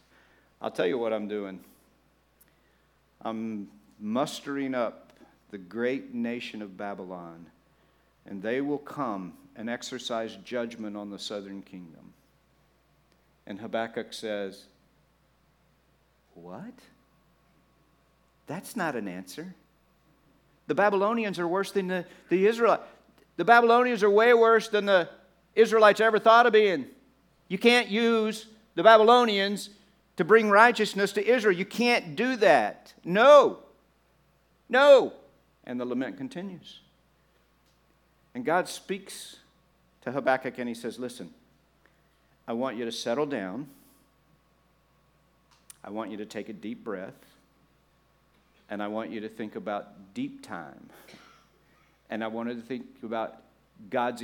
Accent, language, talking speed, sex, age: American, English, 125 wpm, male, 50-69